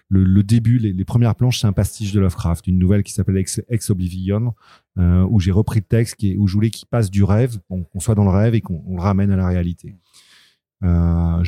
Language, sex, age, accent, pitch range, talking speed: French, male, 30-49, French, 90-115 Hz, 255 wpm